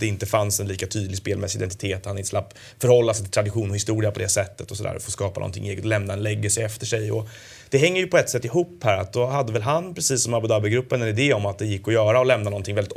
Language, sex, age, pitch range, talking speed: Swedish, male, 30-49, 100-120 Hz, 290 wpm